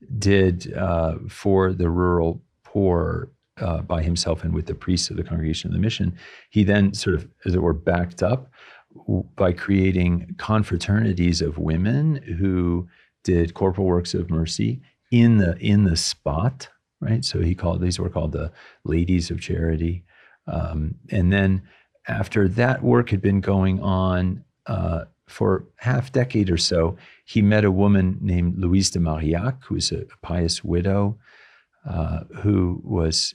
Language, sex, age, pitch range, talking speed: English, male, 40-59, 85-100 Hz, 155 wpm